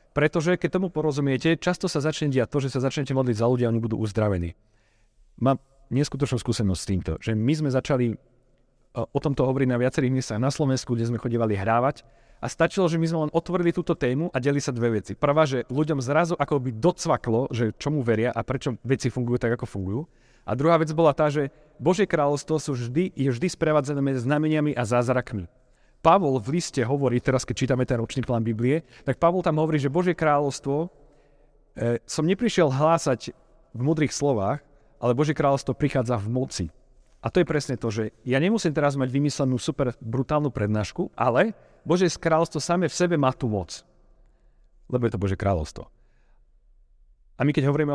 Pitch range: 120-150 Hz